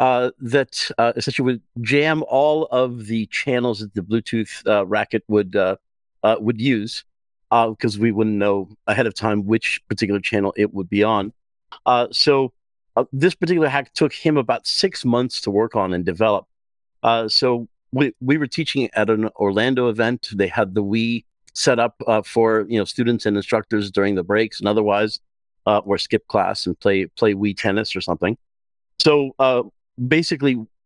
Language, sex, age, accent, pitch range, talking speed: English, male, 50-69, American, 105-140 Hz, 180 wpm